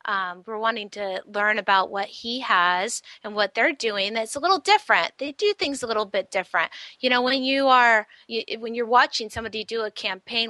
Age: 30-49